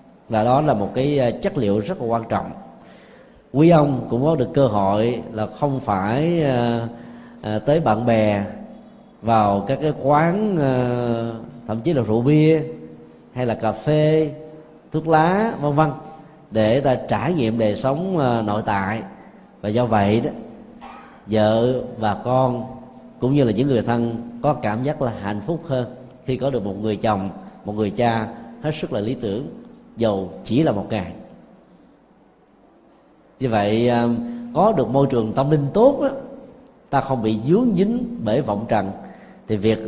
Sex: male